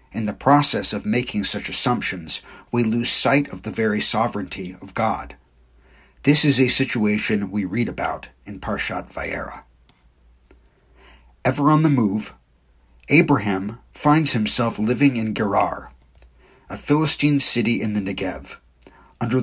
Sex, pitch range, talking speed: male, 95-135 Hz, 135 wpm